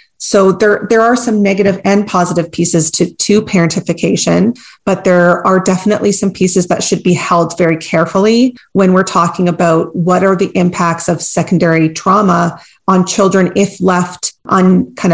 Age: 30-49